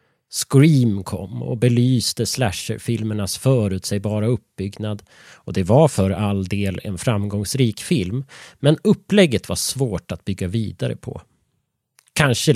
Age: 30-49